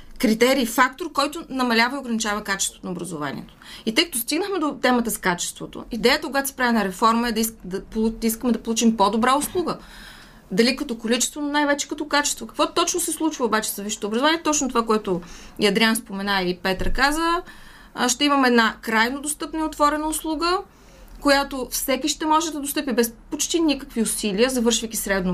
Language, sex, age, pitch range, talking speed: Bulgarian, female, 30-49, 220-290 Hz, 175 wpm